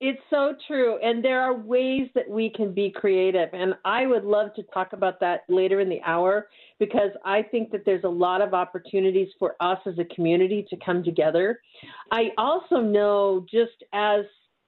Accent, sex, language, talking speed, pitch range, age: American, female, English, 190 wpm, 175-215 Hz, 50-69